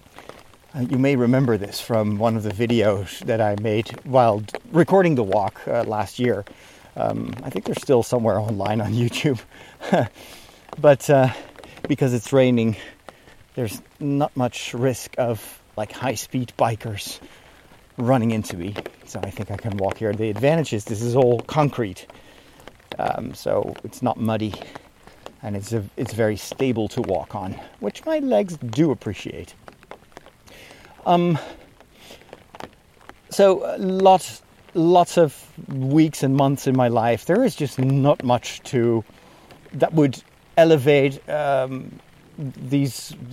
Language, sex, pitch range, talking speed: English, male, 110-150 Hz, 135 wpm